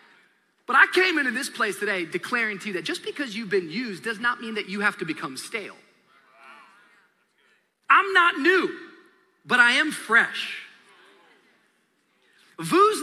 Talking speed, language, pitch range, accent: 150 wpm, English, 205-295 Hz, American